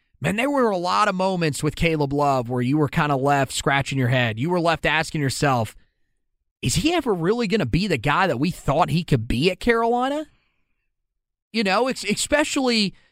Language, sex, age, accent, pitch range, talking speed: English, male, 30-49, American, 145-195 Hz, 200 wpm